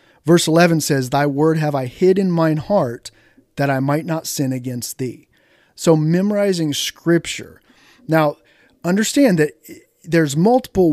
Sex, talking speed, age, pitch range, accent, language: male, 145 wpm, 30-49, 140-170 Hz, American, English